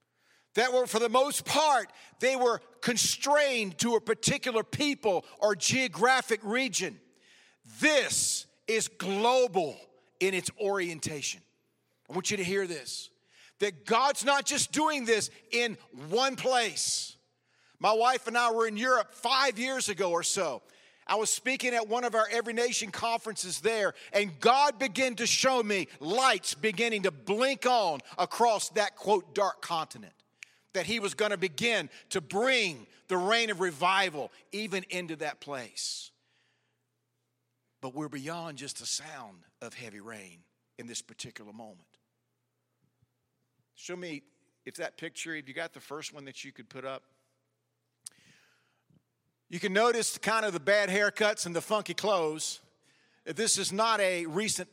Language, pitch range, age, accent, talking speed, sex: English, 160-235 Hz, 50-69, American, 150 wpm, male